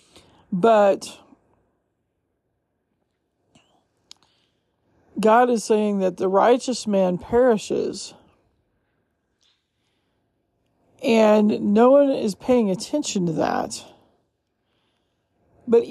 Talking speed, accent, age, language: 70 wpm, American, 50-69, English